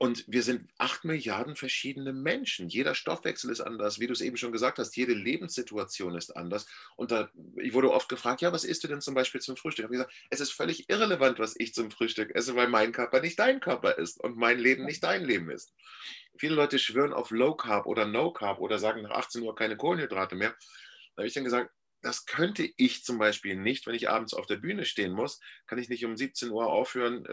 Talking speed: 230 wpm